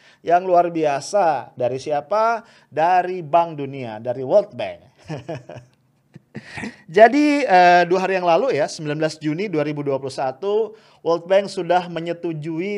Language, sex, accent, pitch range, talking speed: English, male, Indonesian, 135-185 Hz, 115 wpm